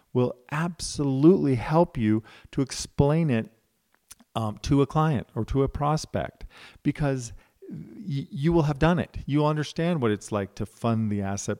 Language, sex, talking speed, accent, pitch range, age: English, male, 155 wpm, American, 105-130 Hz, 50-69